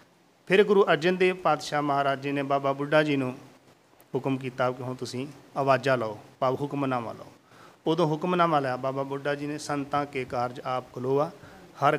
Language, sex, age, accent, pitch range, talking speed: Hindi, male, 40-59, native, 130-150 Hz, 175 wpm